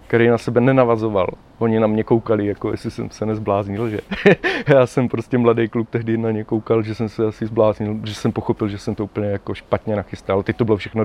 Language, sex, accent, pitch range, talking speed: Czech, male, native, 105-125 Hz, 225 wpm